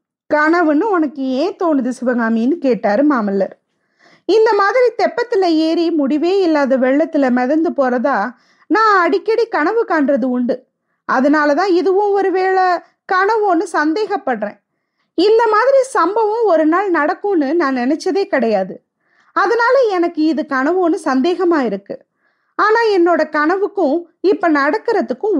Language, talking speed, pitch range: Tamil, 110 wpm, 270-365 Hz